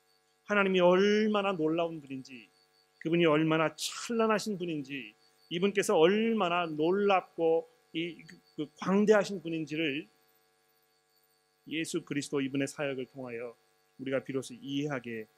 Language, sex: Korean, male